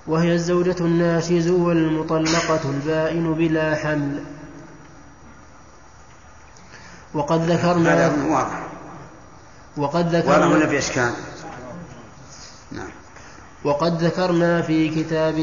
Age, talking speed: 20-39, 45 wpm